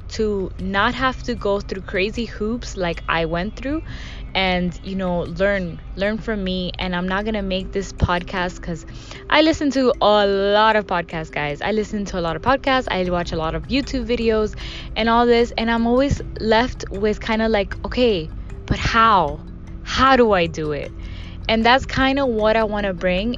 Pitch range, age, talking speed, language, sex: 185-240 Hz, 10-29, 200 wpm, English, female